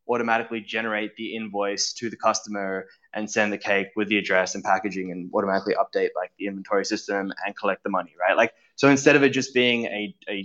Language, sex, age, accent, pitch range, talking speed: English, male, 20-39, Australian, 100-120 Hz, 210 wpm